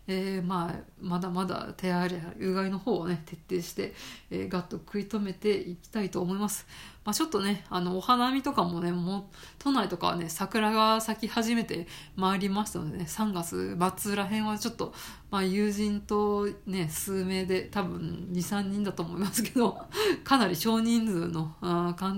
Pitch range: 180-210 Hz